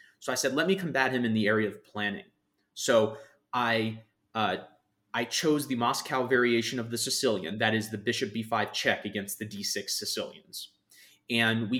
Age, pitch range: 30-49, 110-140 Hz